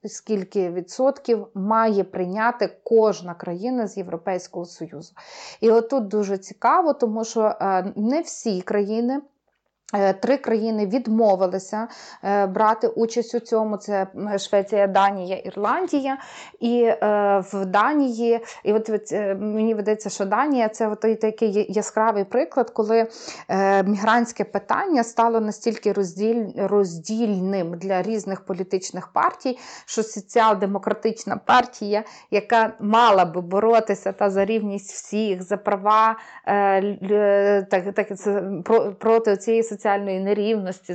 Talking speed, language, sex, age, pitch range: 115 wpm, Ukrainian, female, 20-39, 200-230 Hz